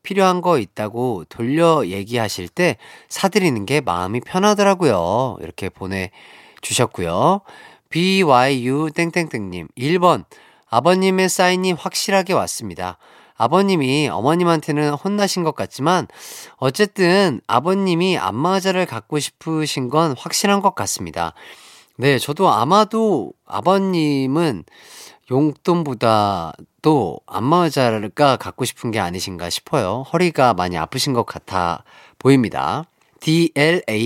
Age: 40-59